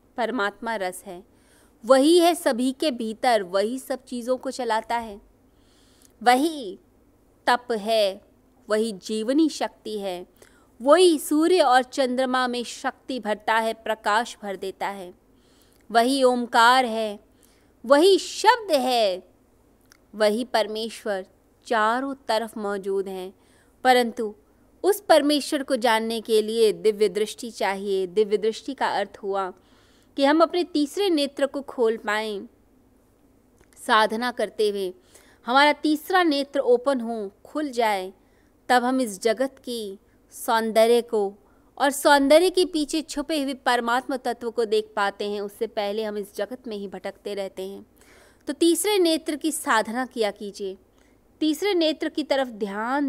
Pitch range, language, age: 215-280 Hz, Hindi, 20-39